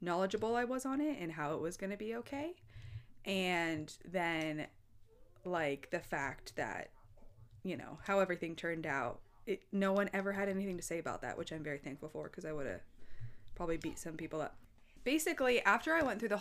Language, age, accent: English, 20-39, American